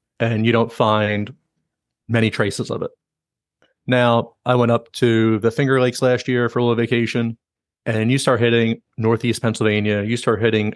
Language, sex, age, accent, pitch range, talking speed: English, male, 30-49, American, 115-140 Hz, 175 wpm